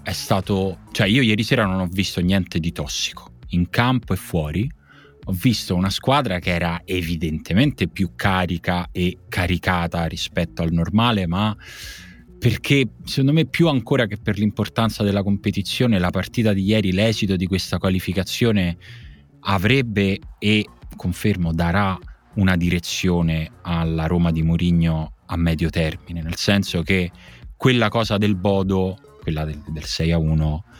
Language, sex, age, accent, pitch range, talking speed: Italian, male, 30-49, native, 80-100 Hz, 145 wpm